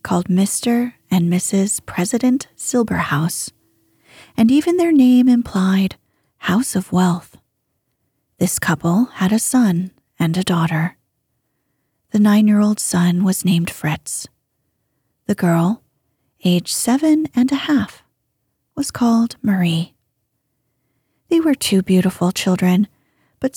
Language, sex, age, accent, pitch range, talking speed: English, female, 30-49, American, 175-245 Hz, 115 wpm